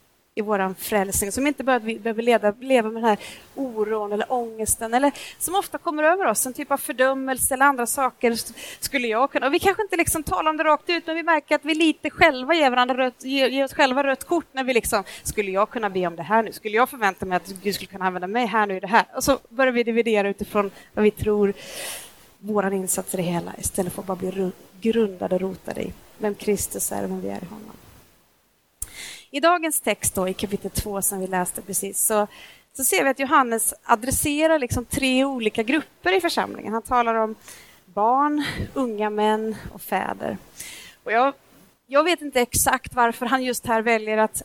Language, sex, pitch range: Swedish, female, 210-275 Hz